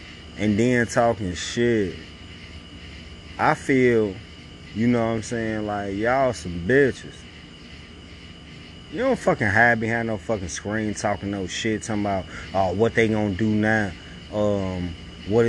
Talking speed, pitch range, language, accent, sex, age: 145 wpm, 80-115 Hz, English, American, male, 30-49